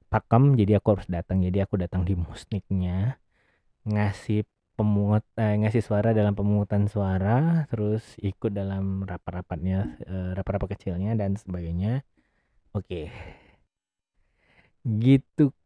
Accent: native